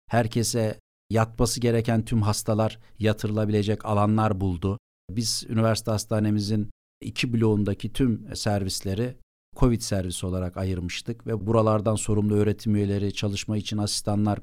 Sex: male